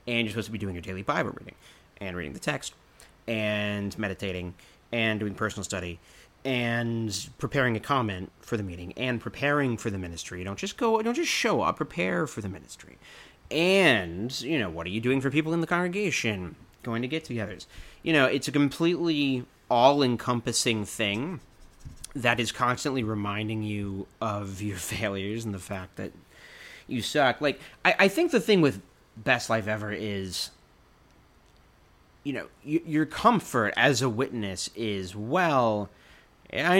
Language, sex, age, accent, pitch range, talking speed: English, male, 30-49, American, 100-145 Hz, 165 wpm